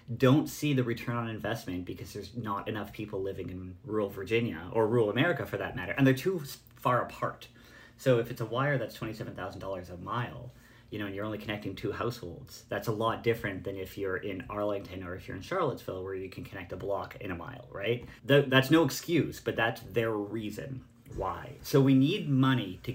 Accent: American